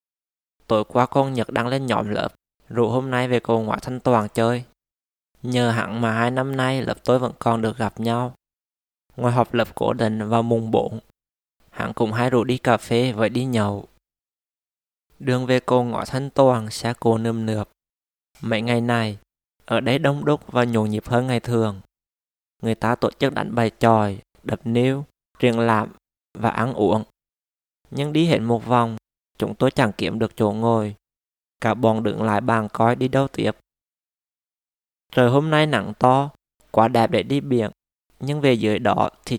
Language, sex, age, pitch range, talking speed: Vietnamese, male, 20-39, 110-125 Hz, 185 wpm